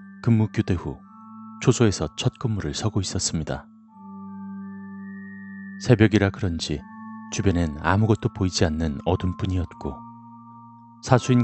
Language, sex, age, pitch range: Korean, male, 40-59, 95-145 Hz